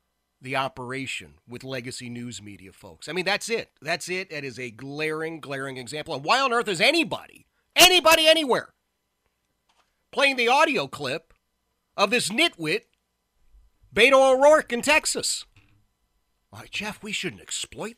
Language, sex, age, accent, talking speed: English, male, 40-59, American, 145 wpm